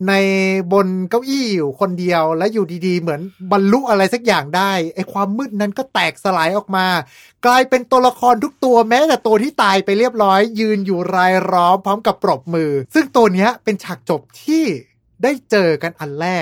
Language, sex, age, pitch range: Thai, male, 20-39, 170-225 Hz